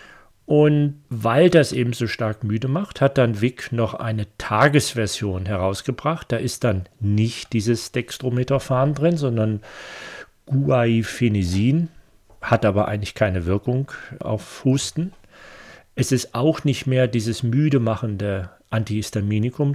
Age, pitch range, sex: 40-59, 110-140 Hz, male